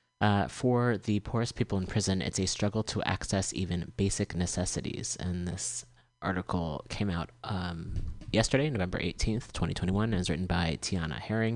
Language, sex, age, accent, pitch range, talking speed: English, male, 30-49, American, 95-120 Hz, 160 wpm